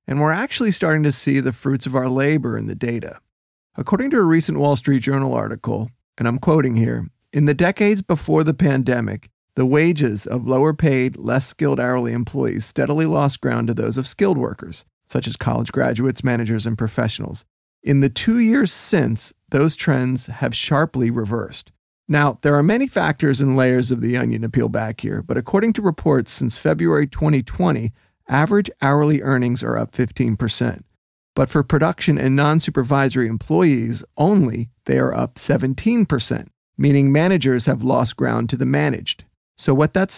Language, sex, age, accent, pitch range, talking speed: English, male, 30-49, American, 125-155 Hz, 170 wpm